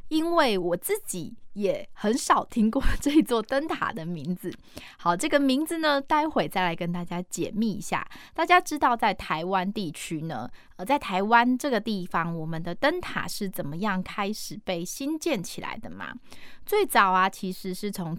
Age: 10-29